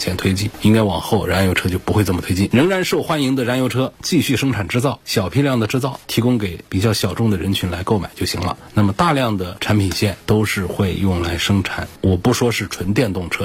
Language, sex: Chinese, male